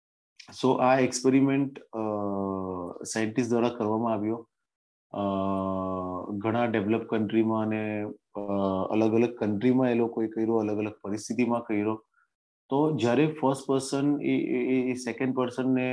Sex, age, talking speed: male, 30-49, 115 wpm